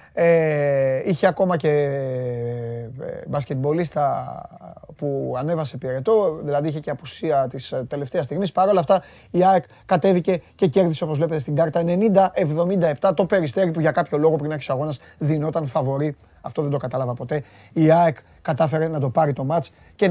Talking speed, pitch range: 160 wpm, 145-190 Hz